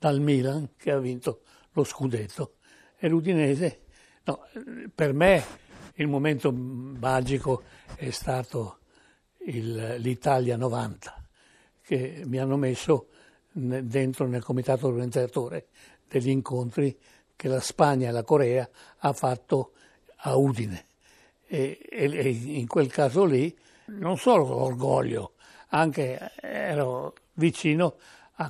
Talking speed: 110 wpm